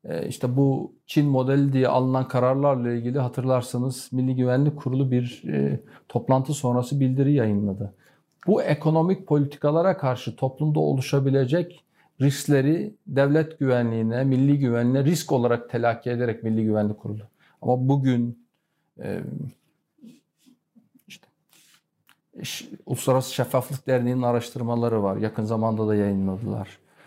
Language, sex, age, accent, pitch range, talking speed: Turkish, male, 50-69, native, 115-145 Hz, 110 wpm